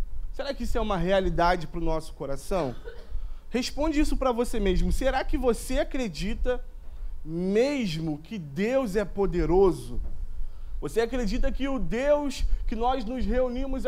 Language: Portuguese